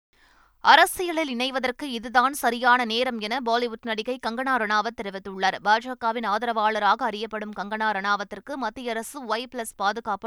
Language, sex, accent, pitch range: Tamil, female, native, 220-260 Hz